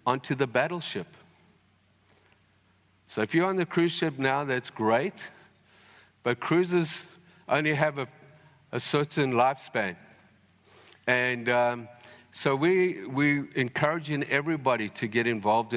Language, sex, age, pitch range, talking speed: English, male, 50-69, 105-140 Hz, 120 wpm